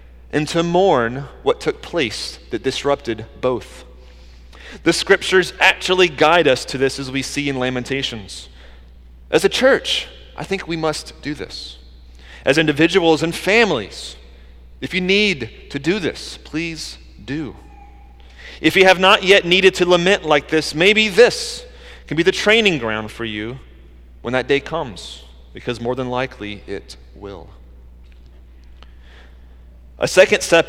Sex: male